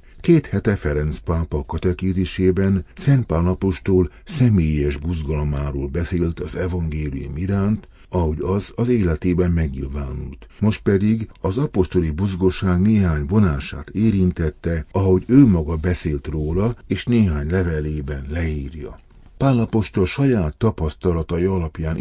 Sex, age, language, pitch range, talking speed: male, 60-79, Hungarian, 80-95 Hz, 105 wpm